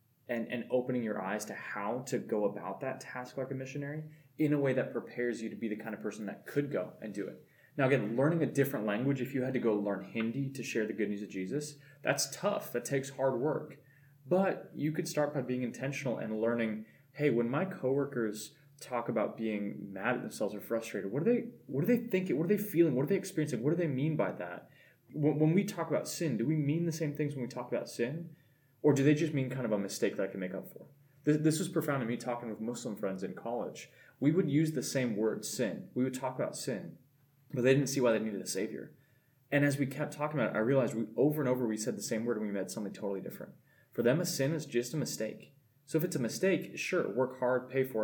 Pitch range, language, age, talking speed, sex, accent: 120-150 Hz, English, 20-39, 260 wpm, male, American